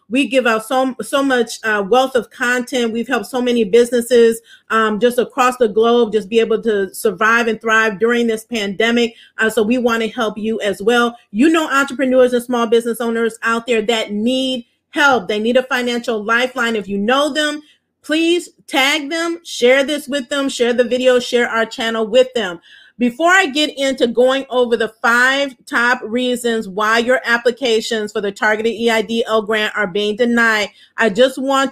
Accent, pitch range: American, 220-260 Hz